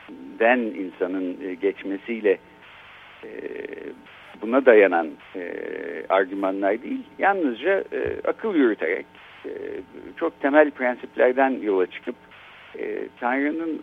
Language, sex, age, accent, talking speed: Turkish, male, 60-79, native, 70 wpm